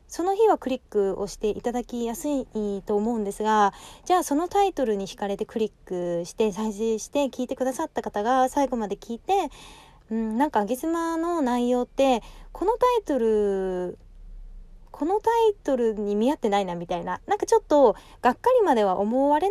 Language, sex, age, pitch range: Japanese, female, 20-39, 205-290 Hz